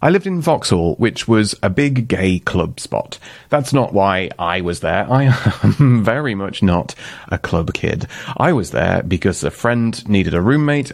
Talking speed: 185 wpm